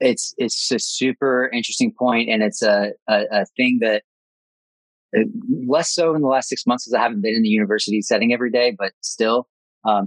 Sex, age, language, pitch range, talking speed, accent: male, 30-49, English, 110-130 Hz, 195 wpm, American